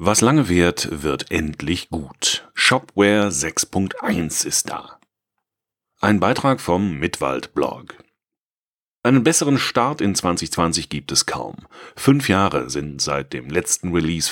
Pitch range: 85-110 Hz